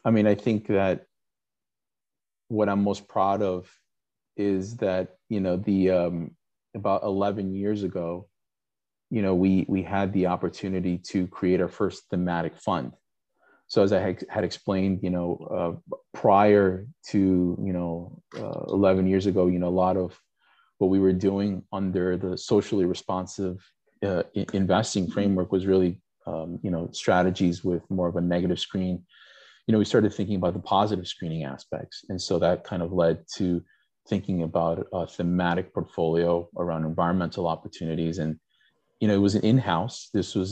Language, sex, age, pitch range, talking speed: English, male, 30-49, 85-100 Hz, 165 wpm